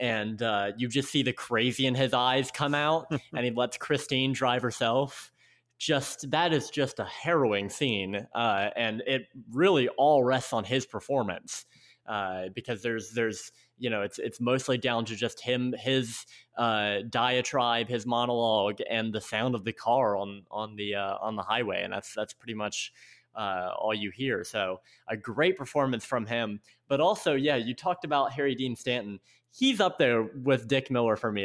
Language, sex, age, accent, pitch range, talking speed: English, male, 20-39, American, 110-130 Hz, 185 wpm